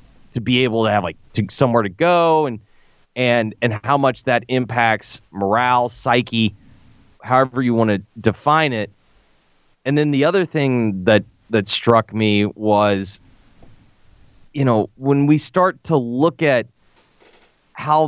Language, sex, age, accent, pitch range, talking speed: English, male, 30-49, American, 110-150 Hz, 145 wpm